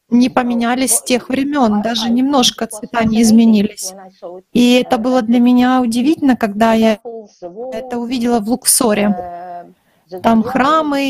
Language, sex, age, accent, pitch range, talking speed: Russian, female, 30-49, native, 225-260 Hz, 130 wpm